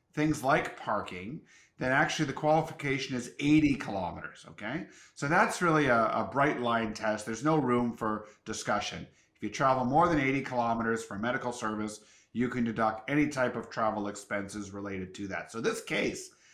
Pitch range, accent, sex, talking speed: 110-150 Hz, American, male, 175 wpm